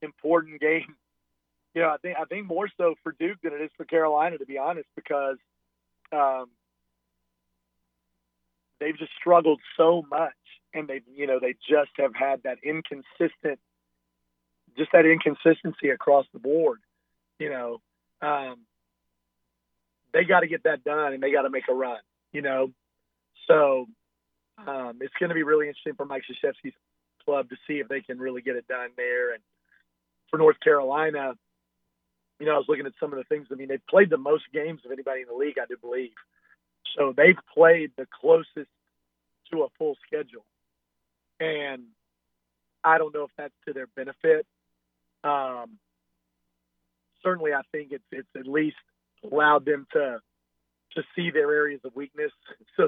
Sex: male